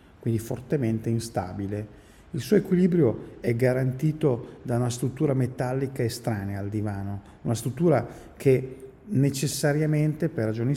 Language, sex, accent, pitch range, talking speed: Italian, male, native, 110-140 Hz, 115 wpm